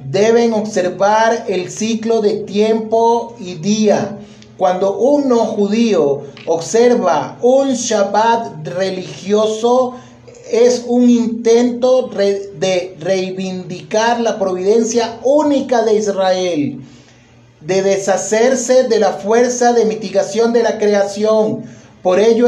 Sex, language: male, Spanish